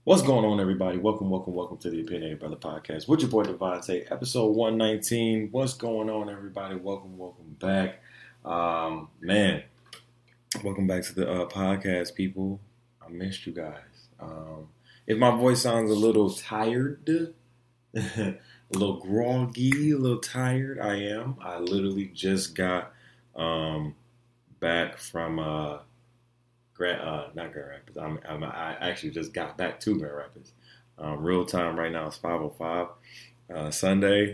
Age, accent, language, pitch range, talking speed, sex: 20-39, American, English, 85-120 Hz, 145 wpm, male